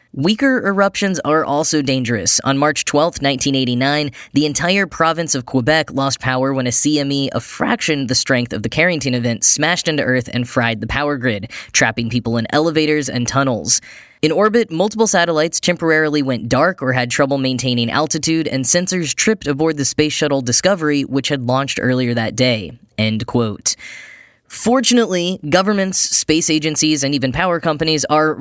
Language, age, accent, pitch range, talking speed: English, 10-29, American, 125-160 Hz, 165 wpm